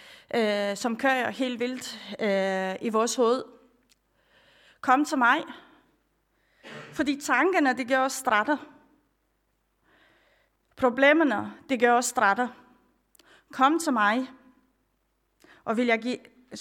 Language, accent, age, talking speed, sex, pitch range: Danish, native, 30-49, 105 wpm, female, 240-285 Hz